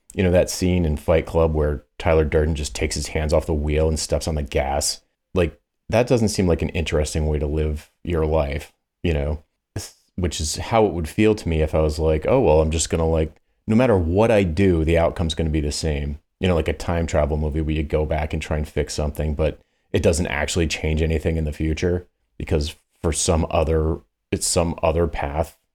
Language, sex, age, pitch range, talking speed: English, male, 30-49, 75-90 Hz, 230 wpm